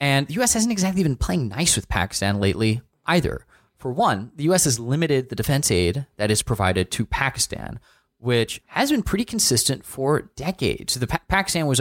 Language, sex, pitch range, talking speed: English, male, 100-140 Hz, 195 wpm